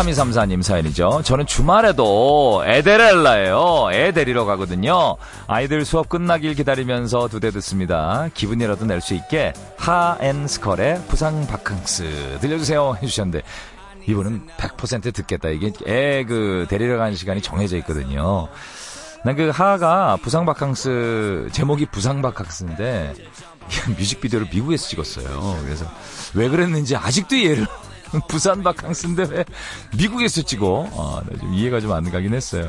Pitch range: 100-160 Hz